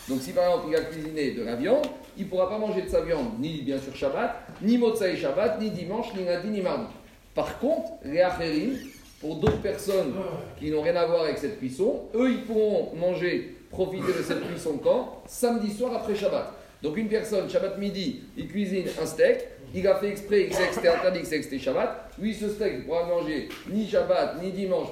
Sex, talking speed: male, 210 wpm